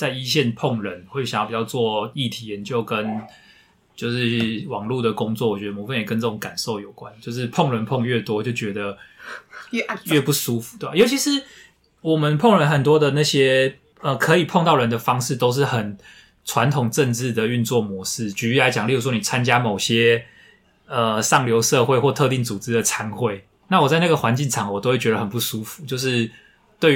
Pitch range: 110-135 Hz